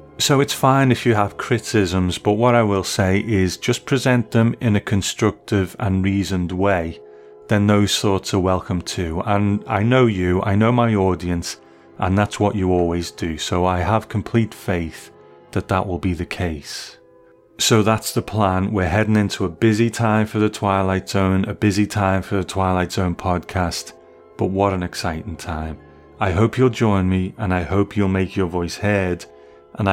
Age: 30-49